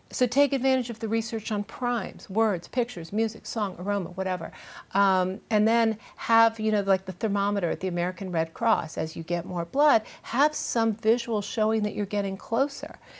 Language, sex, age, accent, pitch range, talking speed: English, female, 50-69, American, 180-230 Hz, 185 wpm